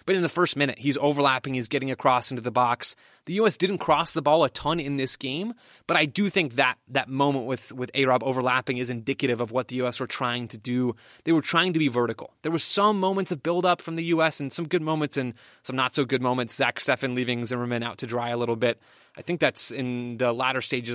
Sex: male